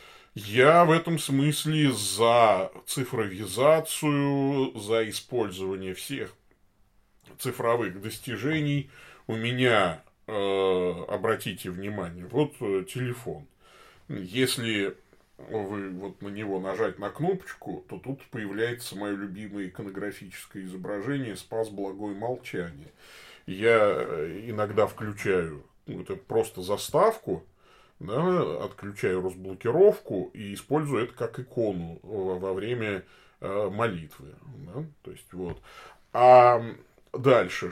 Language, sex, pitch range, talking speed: Russian, male, 95-135 Hz, 90 wpm